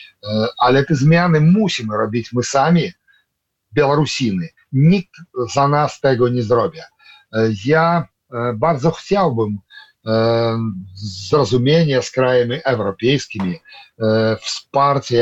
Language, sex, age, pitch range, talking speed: Polish, male, 50-69, 115-135 Hz, 85 wpm